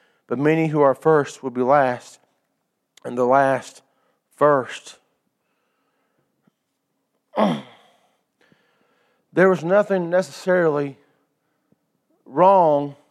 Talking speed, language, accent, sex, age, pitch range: 80 wpm, English, American, male, 40-59, 145-180 Hz